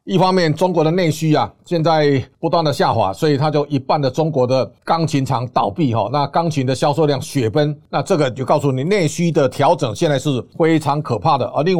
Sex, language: male, Chinese